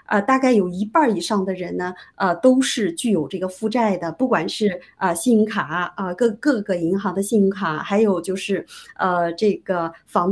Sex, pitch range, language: female, 185-230 Hz, Chinese